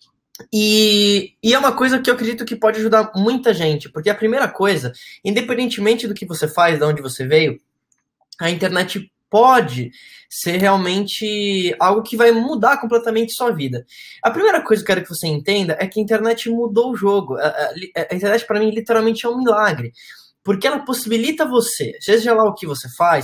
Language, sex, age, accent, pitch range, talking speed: Portuguese, male, 10-29, Brazilian, 175-235 Hz, 185 wpm